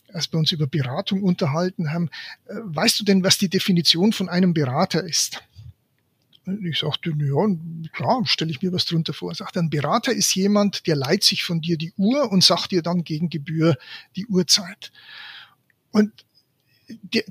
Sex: male